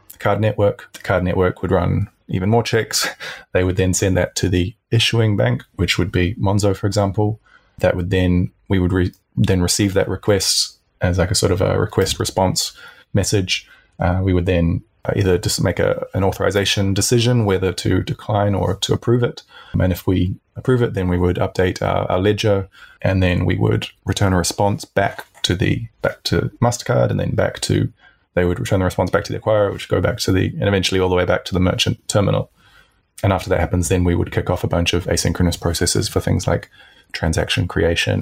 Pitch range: 90-105 Hz